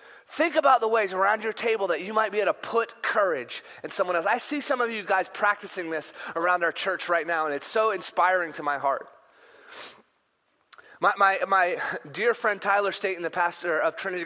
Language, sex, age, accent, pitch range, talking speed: English, male, 30-49, American, 185-230 Hz, 205 wpm